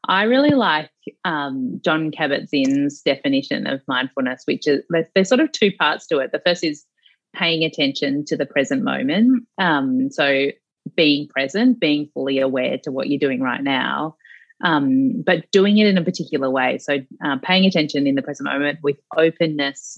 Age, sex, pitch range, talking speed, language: 30-49, female, 145-190 Hz, 175 wpm, English